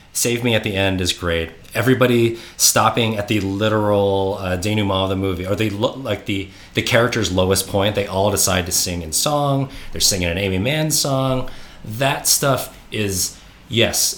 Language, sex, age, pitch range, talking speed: English, male, 30-49, 95-110 Hz, 180 wpm